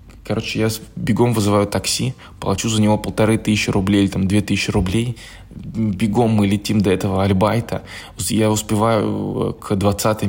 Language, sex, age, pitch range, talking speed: Russian, male, 20-39, 95-110 Hz, 145 wpm